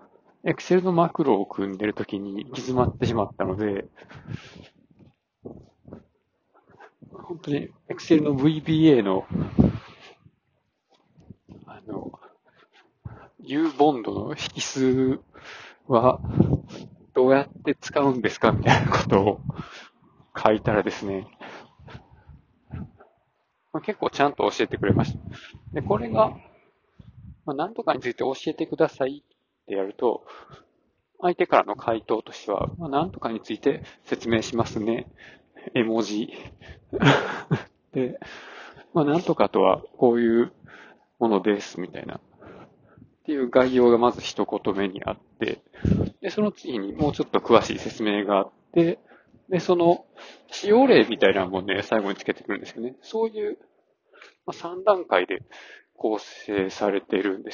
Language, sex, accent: Japanese, male, native